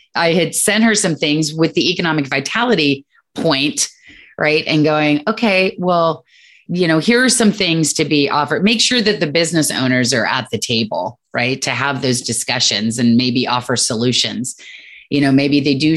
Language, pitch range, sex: English, 135-175 Hz, female